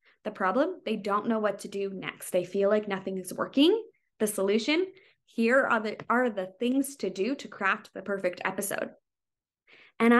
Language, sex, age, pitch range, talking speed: English, female, 20-39, 200-245 Hz, 180 wpm